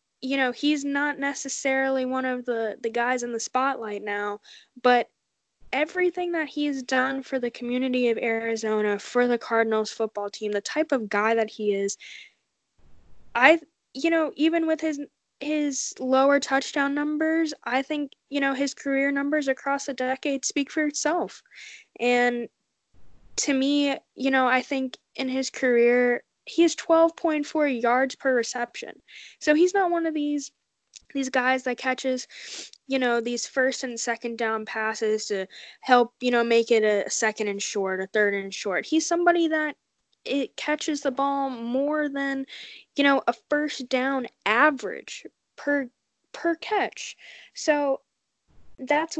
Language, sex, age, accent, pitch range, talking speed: English, female, 10-29, American, 240-295 Hz, 155 wpm